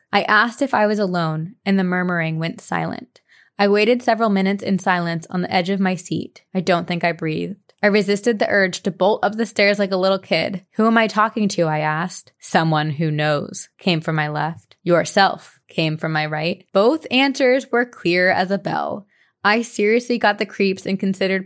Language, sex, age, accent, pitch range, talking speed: English, female, 20-39, American, 175-210 Hz, 205 wpm